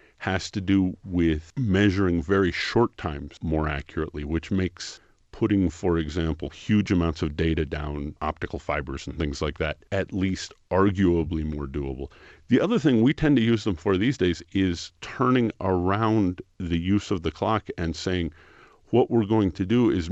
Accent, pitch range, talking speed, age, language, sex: American, 85-110 Hz, 175 wpm, 50-69, English, male